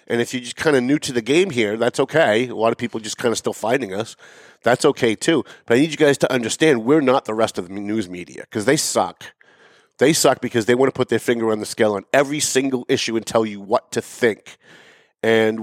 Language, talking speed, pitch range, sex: English, 255 wpm, 110-150 Hz, male